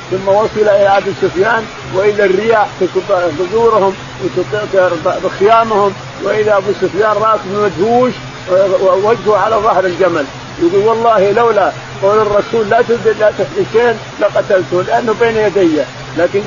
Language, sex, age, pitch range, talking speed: Arabic, male, 50-69, 160-195 Hz, 130 wpm